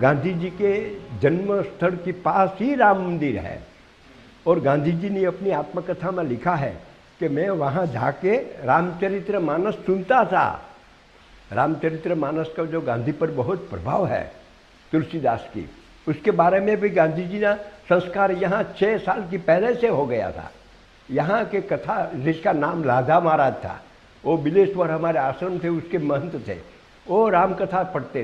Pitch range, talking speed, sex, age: 140-190 Hz, 130 wpm, male, 60-79